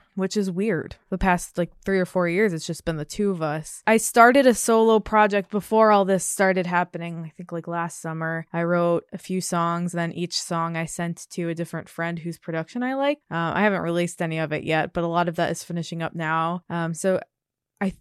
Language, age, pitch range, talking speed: English, 20-39, 170-205 Hz, 235 wpm